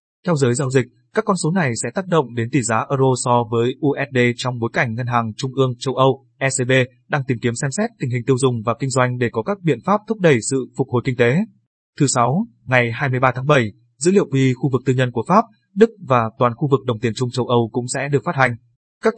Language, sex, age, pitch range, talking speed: Vietnamese, male, 20-39, 120-145 Hz, 260 wpm